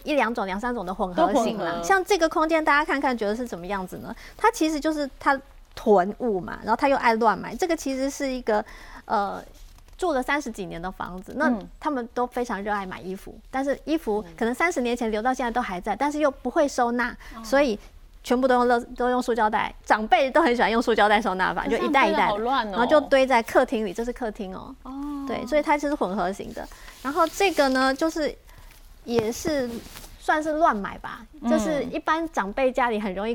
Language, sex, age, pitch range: Chinese, female, 30-49, 215-275 Hz